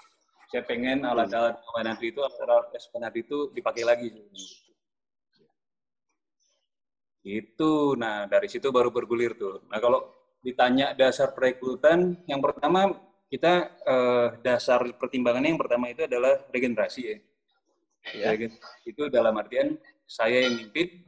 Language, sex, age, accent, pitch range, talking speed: Indonesian, male, 20-39, native, 115-150 Hz, 120 wpm